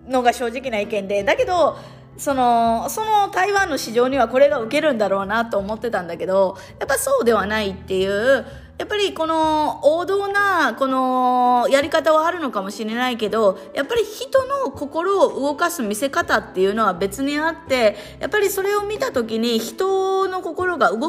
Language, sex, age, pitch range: Japanese, female, 20-39, 205-290 Hz